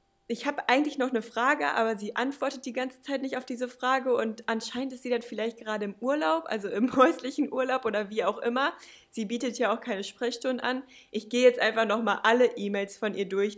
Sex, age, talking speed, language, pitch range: female, 20-39, 220 wpm, German, 205-250 Hz